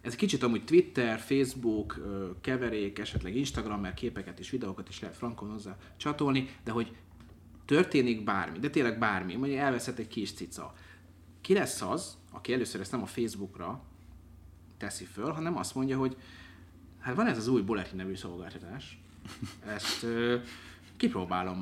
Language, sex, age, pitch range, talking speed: Hungarian, male, 30-49, 95-125 Hz, 155 wpm